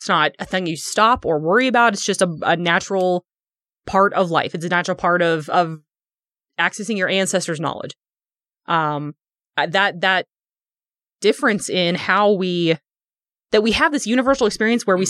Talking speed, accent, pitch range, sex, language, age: 165 wpm, American, 160-195 Hz, female, English, 20-39